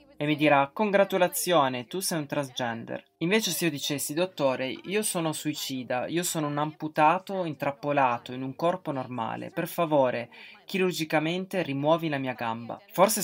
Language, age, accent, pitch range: Italian, 20-39, native, 135-170 Hz